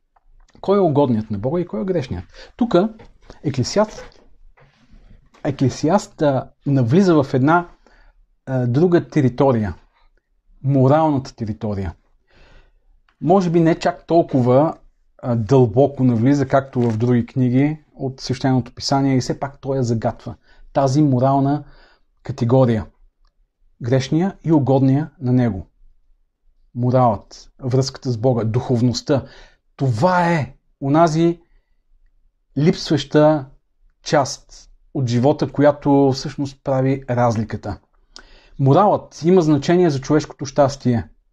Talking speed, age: 105 wpm, 40-59